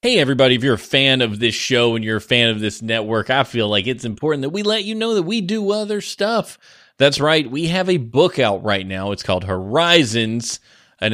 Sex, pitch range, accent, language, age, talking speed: male, 115-155 Hz, American, English, 20-39, 235 wpm